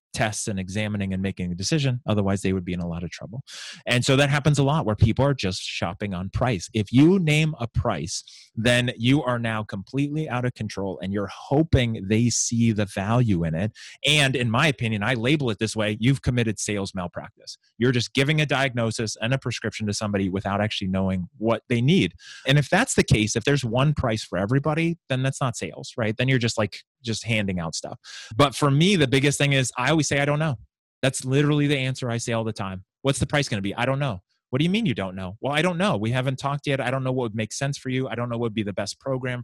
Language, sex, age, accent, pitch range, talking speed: English, male, 30-49, American, 110-135 Hz, 255 wpm